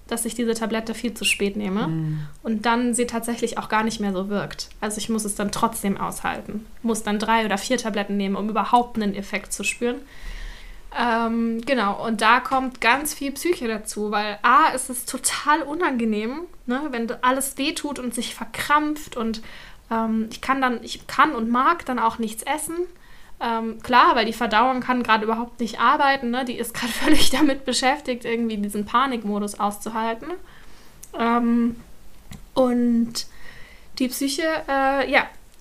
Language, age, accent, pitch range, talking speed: German, 10-29, German, 220-260 Hz, 165 wpm